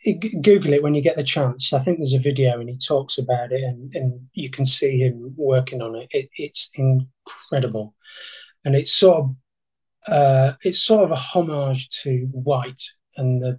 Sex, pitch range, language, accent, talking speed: male, 130-160 Hz, English, British, 190 wpm